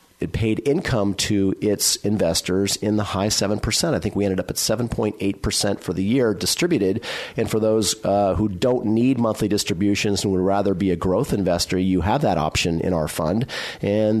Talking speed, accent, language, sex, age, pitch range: 190 wpm, American, English, male, 40-59, 95-115 Hz